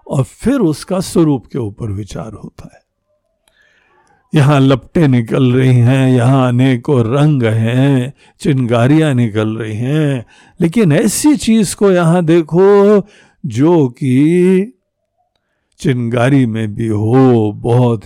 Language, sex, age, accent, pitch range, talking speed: Hindi, male, 60-79, native, 120-180 Hz, 115 wpm